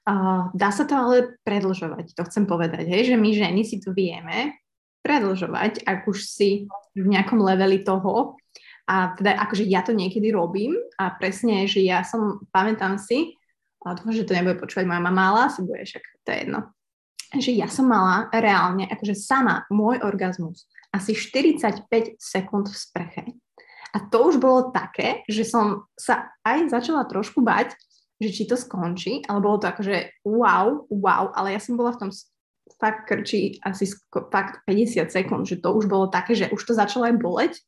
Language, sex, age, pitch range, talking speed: Slovak, female, 20-39, 190-225 Hz, 175 wpm